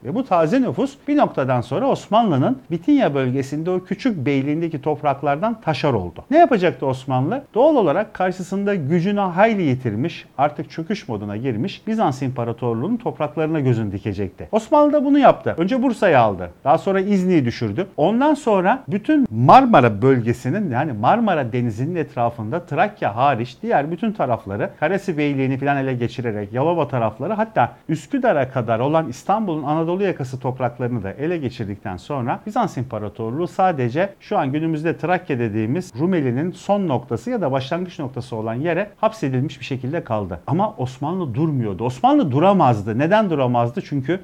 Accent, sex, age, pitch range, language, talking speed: native, male, 50-69, 130-185 Hz, Turkish, 145 wpm